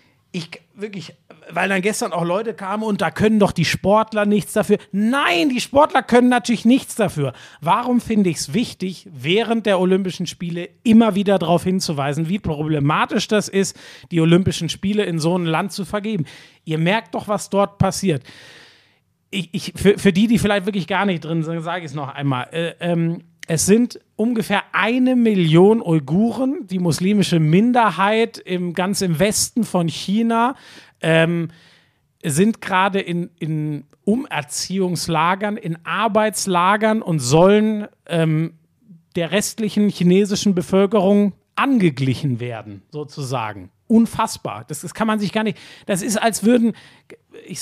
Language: German